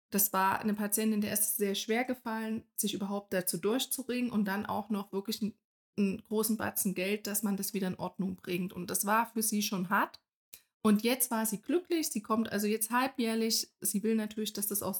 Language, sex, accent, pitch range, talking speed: German, female, German, 200-225 Hz, 210 wpm